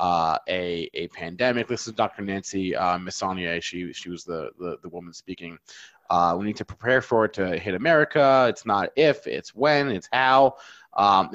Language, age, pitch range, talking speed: English, 20-39, 100-135 Hz, 190 wpm